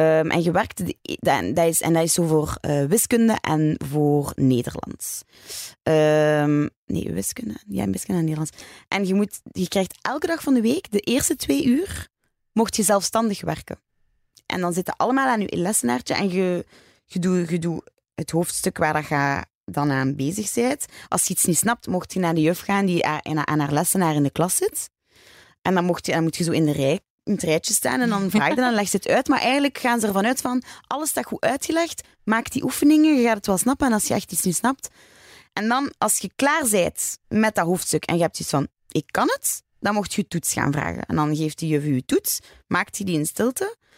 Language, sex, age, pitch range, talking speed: Dutch, female, 20-39, 160-220 Hz, 220 wpm